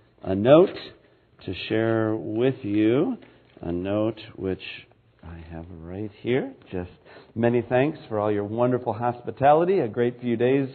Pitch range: 110-140 Hz